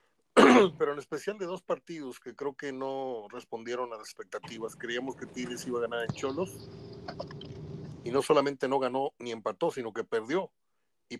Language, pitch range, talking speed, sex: Spanish, 130-165 Hz, 175 wpm, male